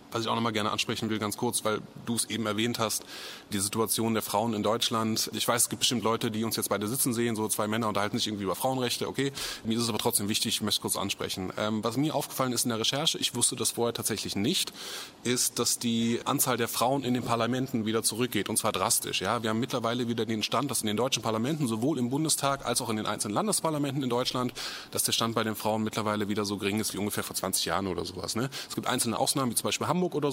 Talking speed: 260 wpm